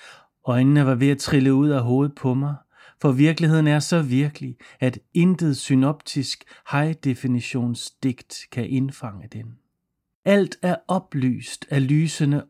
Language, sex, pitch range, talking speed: Danish, male, 120-145 Hz, 130 wpm